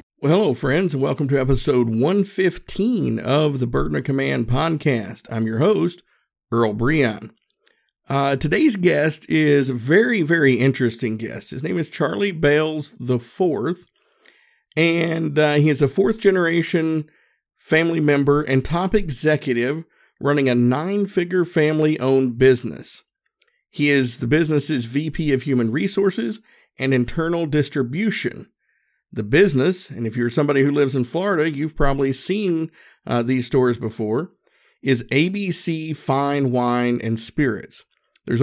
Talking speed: 135 wpm